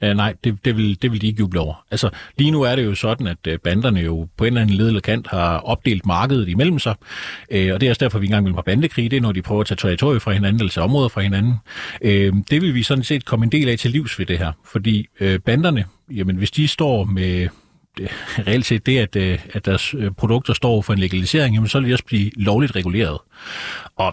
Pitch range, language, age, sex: 95-125 Hz, Danish, 30-49, male